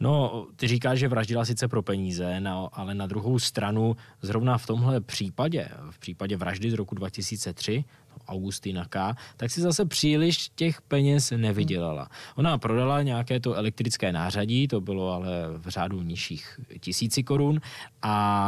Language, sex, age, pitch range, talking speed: Czech, male, 20-39, 100-125 Hz, 155 wpm